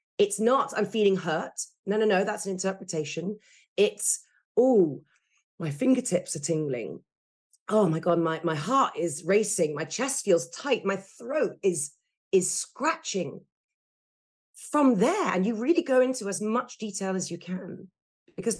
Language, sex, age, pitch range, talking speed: English, female, 40-59, 175-245 Hz, 155 wpm